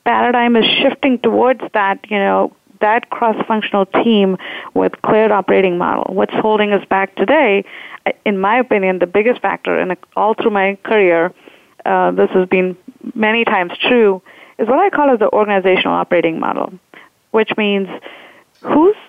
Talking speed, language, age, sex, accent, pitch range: 155 wpm, English, 30-49, female, Indian, 190-230 Hz